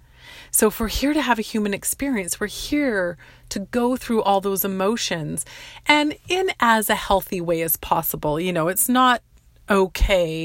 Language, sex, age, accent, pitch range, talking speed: English, female, 30-49, American, 165-225 Hz, 170 wpm